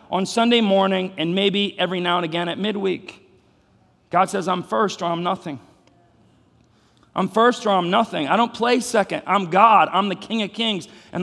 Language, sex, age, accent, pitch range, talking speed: English, male, 40-59, American, 170-215 Hz, 185 wpm